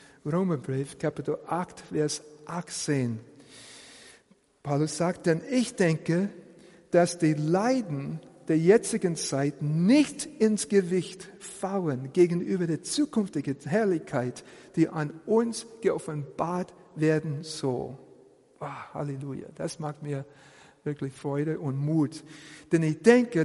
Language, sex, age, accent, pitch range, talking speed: German, male, 50-69, German, 150-195 Hz, 105 wpm